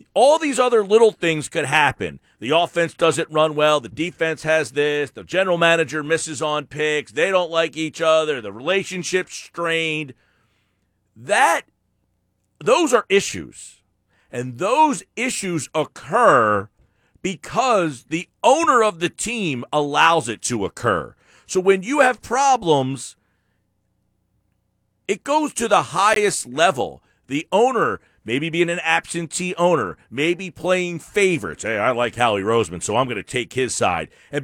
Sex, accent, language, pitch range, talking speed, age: male, American, English, 125-180 Hz, 145 wpm, 40-59